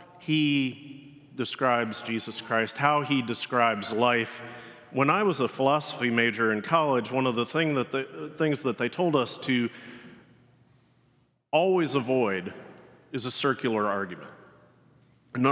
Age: 40-59